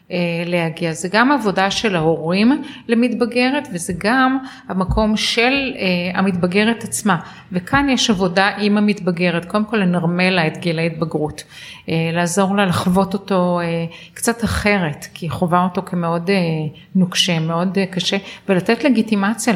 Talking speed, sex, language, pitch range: 145 wpm, female, Hebrew, 170-210 Hz